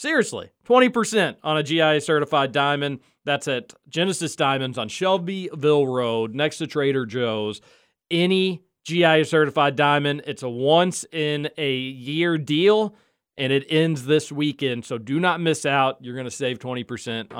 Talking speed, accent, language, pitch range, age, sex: 135 wpm, American, English, 140-205 Hz, 40-59, male